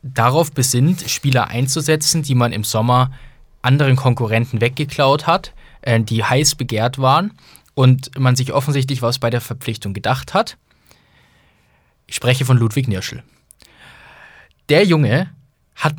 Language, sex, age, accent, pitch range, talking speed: German, male, 20-39, German, 115-145 Hz, 130 wpm